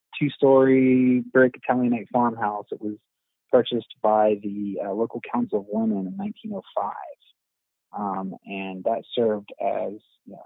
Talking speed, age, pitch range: 130 wpm, 30-49, 100-125 Hz